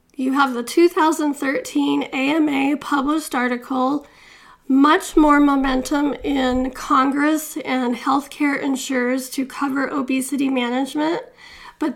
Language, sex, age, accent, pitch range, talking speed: English, female, 40-59, American, 260-310 Hz, 100 wpm